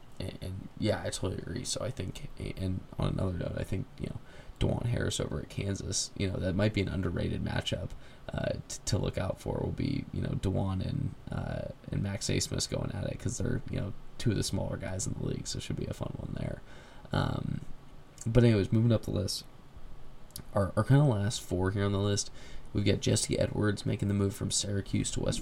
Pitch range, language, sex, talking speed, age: 100-130 Hz, English, male, 230 wpm, 20-39